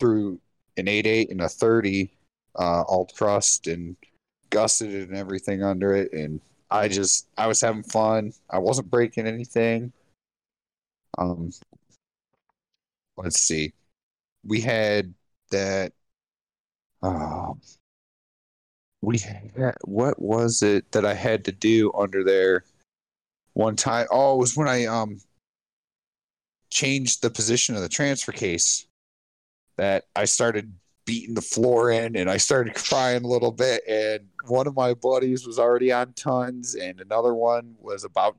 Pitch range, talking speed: 95-120 Hz, 140 wpm